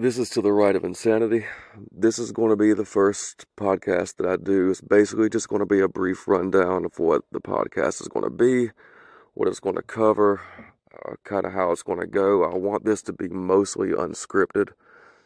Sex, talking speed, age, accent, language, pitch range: male, 215 wpm, 30-49, American, English, 95-125 Hz